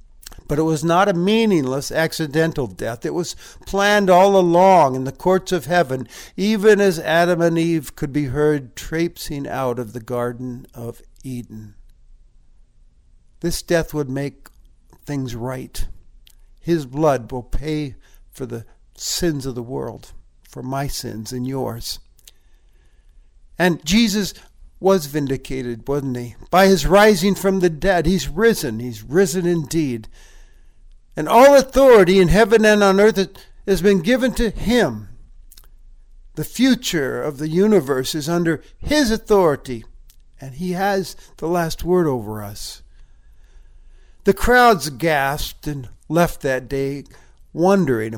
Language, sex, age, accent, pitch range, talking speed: English, male, 60-79, American, 125-180 Hz, 135 wpm